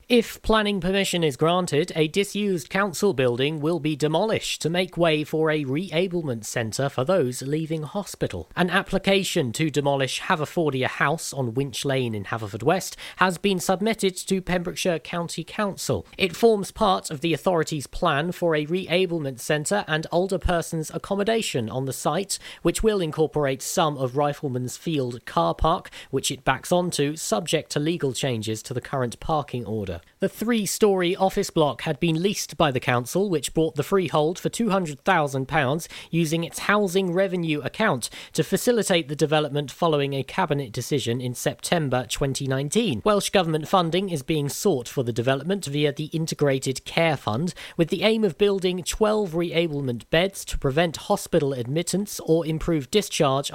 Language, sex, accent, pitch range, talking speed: English, male, British, 135-185 Hz, 160 wpm